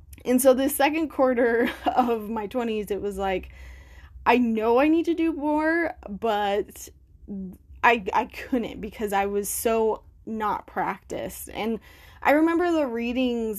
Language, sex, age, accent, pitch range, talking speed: English, female, 20-39, American, 205-250 Hz, 145 wpm